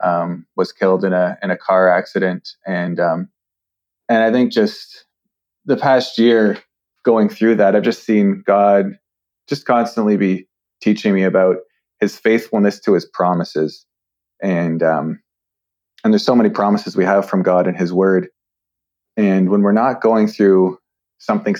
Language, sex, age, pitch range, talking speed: English, male, 30-49, 95-110 Hz, 160 wpm